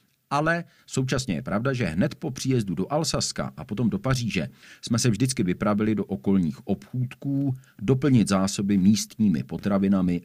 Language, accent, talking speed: Czech, native, 145 wpm